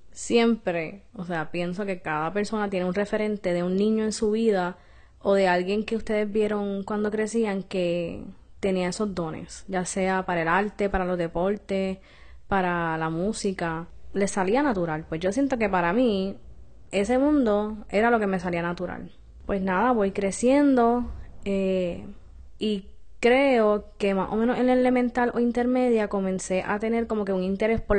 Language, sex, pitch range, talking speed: Spanish, female, 185-220 Hz, 170 wpm